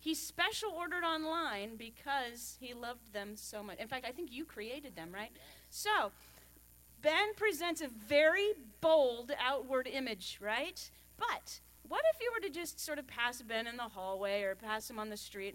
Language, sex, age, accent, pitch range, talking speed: English, female, 40-59, American, 215-330 Hz, 180 wpm